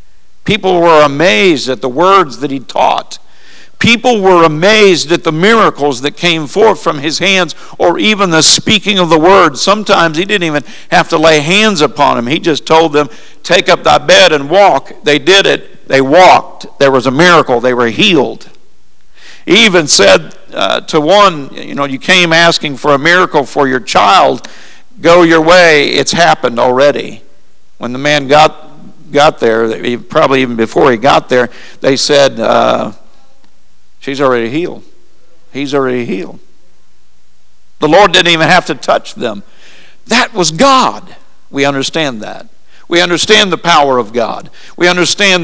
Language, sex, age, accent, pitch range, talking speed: English, male, 50-69, American, 140-180 Hz, 165 wpm